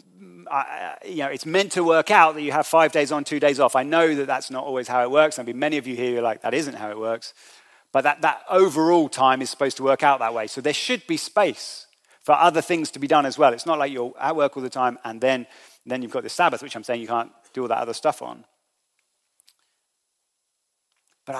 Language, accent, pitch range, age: English, British, 125-160 Hz, 40-59